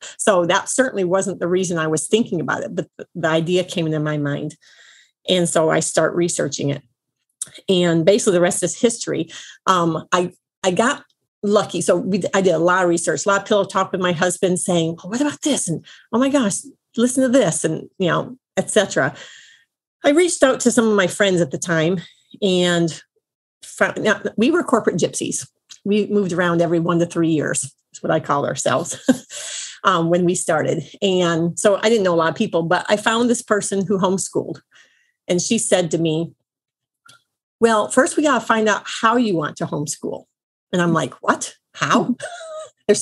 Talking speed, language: 195 wpm, English